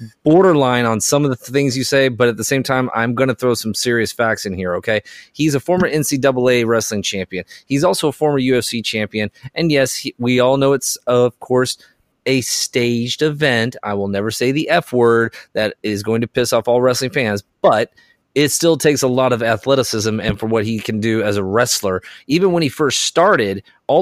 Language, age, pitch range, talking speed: English, 30-49, 115-150 Hz, 210 wpm